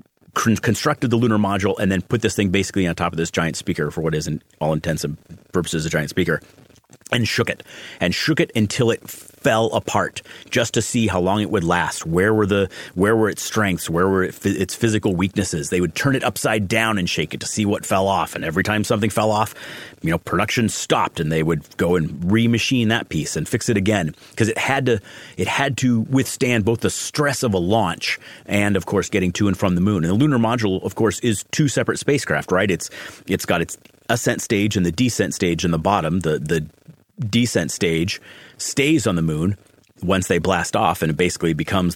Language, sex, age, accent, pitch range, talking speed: English, male, 30-49, American, 90-115 Hz, 220 wpm